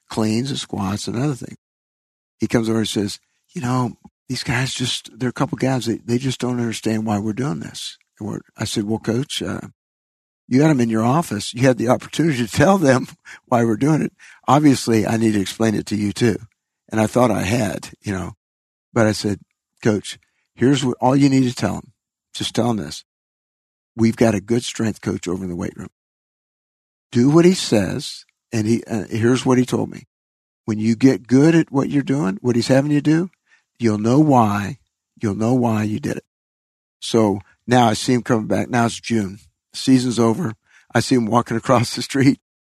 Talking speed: 210 wpm